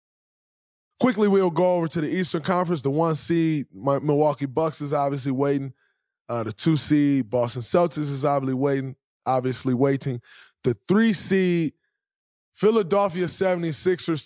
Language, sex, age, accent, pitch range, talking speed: English, male, 20-39, American, 115-155 Hz, 120 wpm